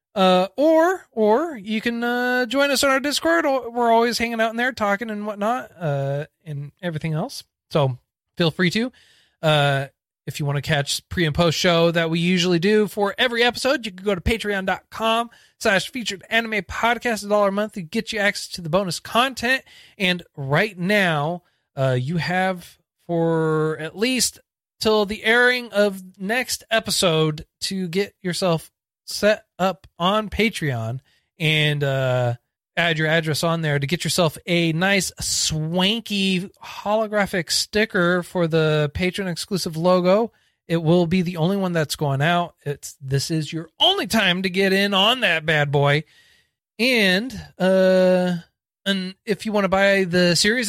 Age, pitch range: 30-49, 155-215 Hz